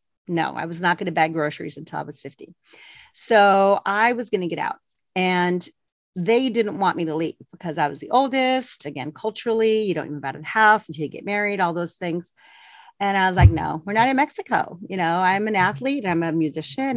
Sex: female